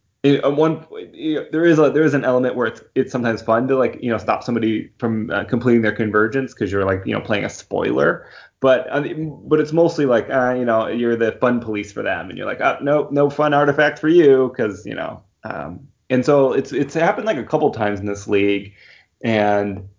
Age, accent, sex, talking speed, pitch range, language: 20-39, American, male, 240 wpm, 110-140 Hz, English